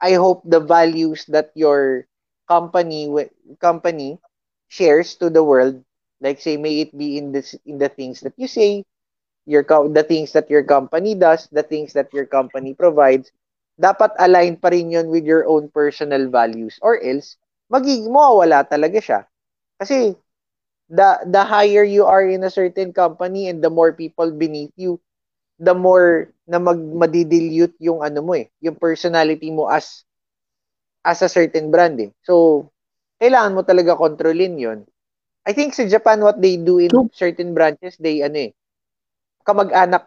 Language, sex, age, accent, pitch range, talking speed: English, male, 20-39, Filipino, 150-185 Hz, 160 wpm